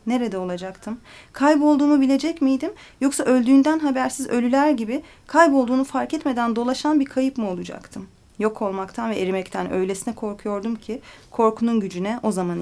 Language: Turkish